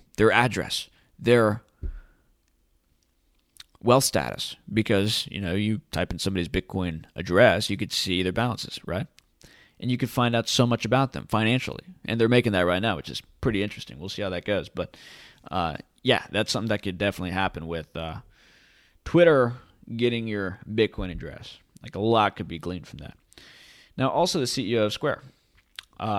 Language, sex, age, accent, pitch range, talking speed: English, male, 20-39, American, 90-120 Hz, 175 wpm